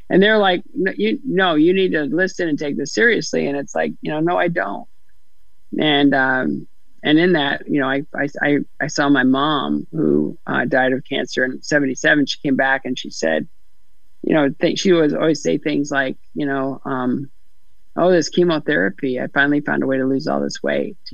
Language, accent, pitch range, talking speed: English, American, 135-155 Hz, 210 wpm